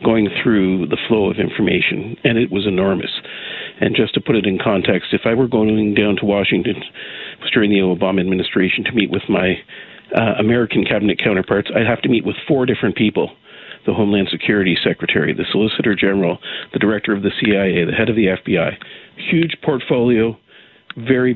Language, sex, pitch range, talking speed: English, male, 100-120 Hz, 180 wpm